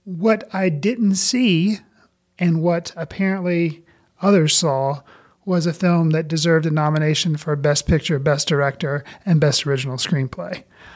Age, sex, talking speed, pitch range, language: 30-49, male, 135 wpm, 160-195 Hz, English